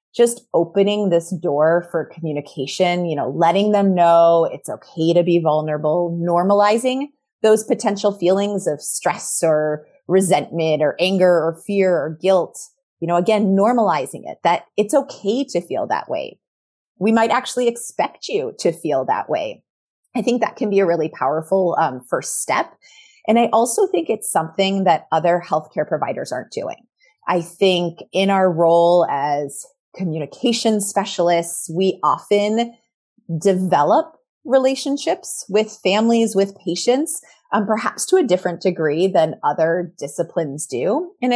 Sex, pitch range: female, 170-225 Hz